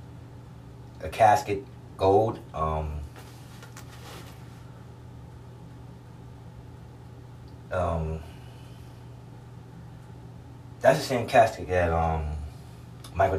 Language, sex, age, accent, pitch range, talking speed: English, male, 20-39, American, 75-100 Hz, 55 wpm